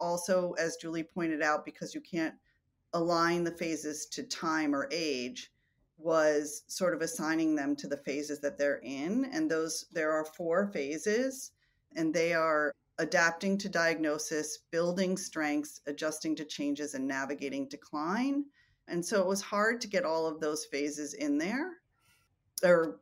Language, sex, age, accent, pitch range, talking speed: English, female, 40-59, American, 155-195 Hz, 155 wpm